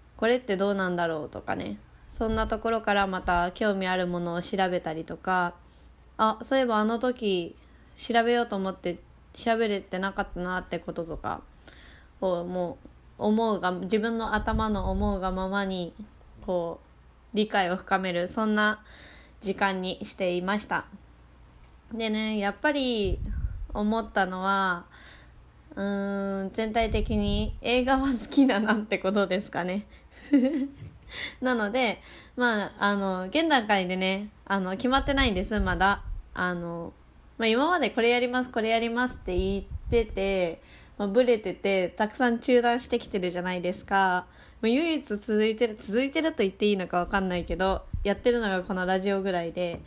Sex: female